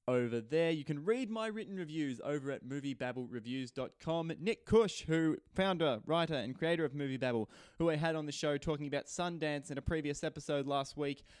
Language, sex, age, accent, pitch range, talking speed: English, male, 20-39, Australian, 130-160 Hz, 190 wpm